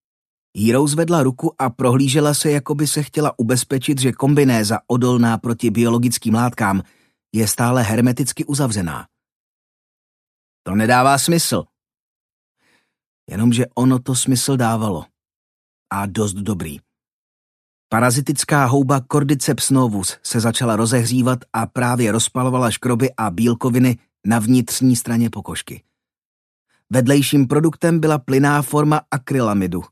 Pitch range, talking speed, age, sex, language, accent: 110-140 Hz, 110 wpm, 30-49, male, Czech, native